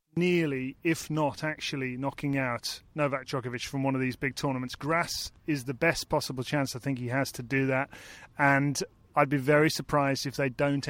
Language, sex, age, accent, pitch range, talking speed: English, male, 30-49, British, 135-155 Hz, 195 wpm